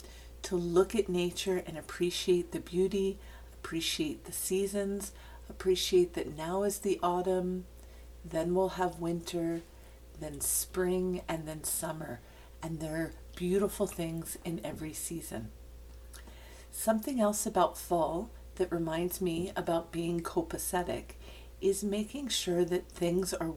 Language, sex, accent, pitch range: English, female, American, 160-200 Hz